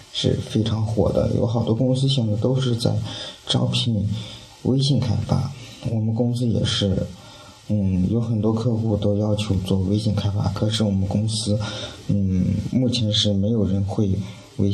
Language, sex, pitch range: Chinese, male, 100-120 Hz